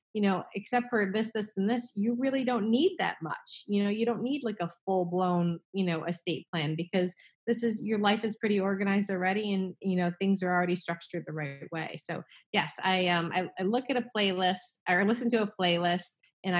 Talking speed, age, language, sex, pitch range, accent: 230 wpm, 30-49, English, female, 175-205 Hz, American